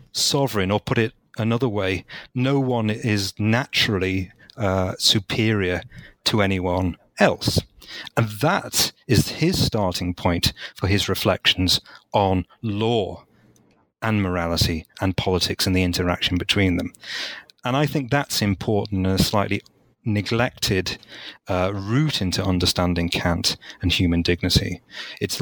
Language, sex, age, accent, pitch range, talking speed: English, male, 30-49, British, 95-115 Hz, 125 wpm